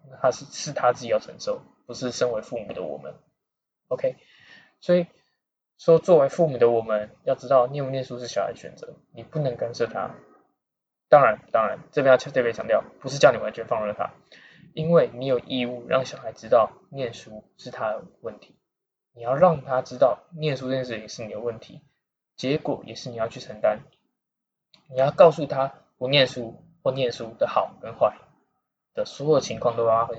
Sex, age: male, 20-39